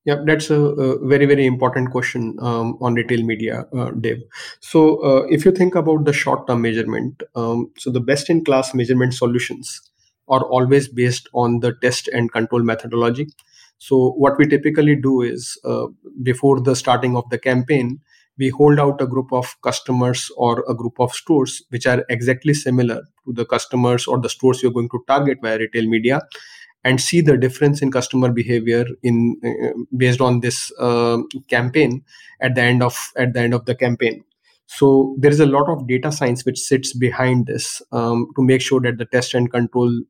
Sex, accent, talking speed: male, Indian, 190 wpm